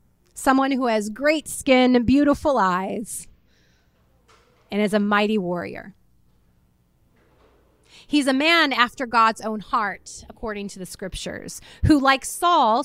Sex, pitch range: female, 190-280 Hz